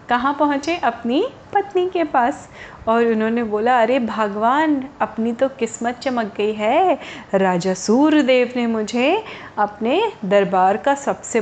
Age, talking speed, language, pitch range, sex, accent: 30-49, 130 wpm, Hindi, 215-275 Hz, female, native